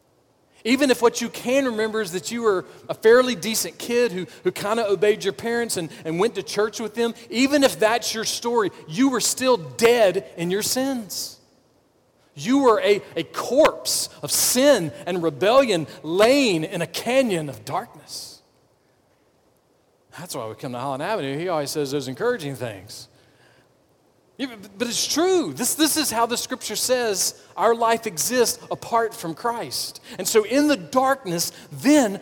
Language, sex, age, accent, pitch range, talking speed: English, male, 40-59, American, 145-235 Hz, 165 wpm